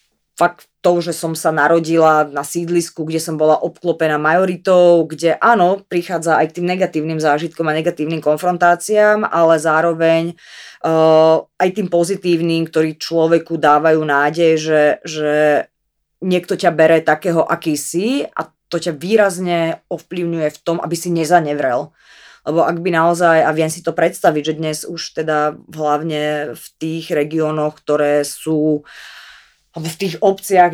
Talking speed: 145 wpm